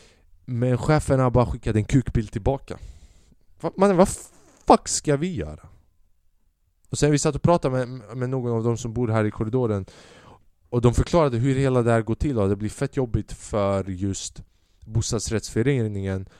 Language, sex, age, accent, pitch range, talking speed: Swedish, male, 20-39, Norwegian, 100-125 Hz, 170 wpm